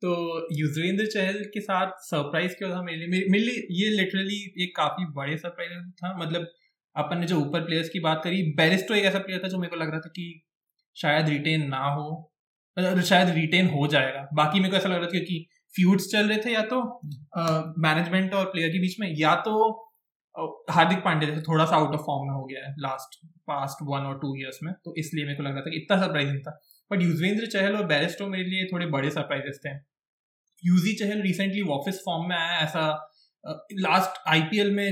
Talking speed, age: 215 wpm, 20-39